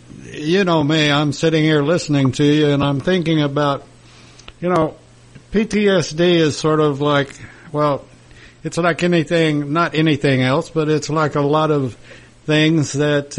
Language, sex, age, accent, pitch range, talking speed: English, male, 60-79, American, 140-160 Hz, 150 wpm